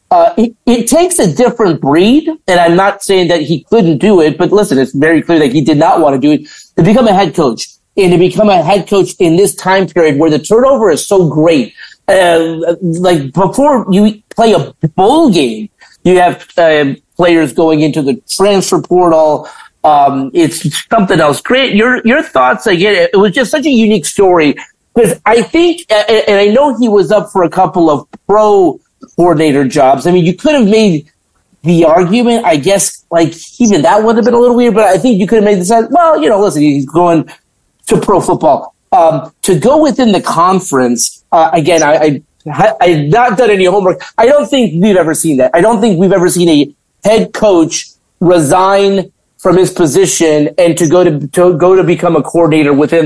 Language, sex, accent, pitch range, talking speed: English, male, American, 160-220 Hz, 210 wpm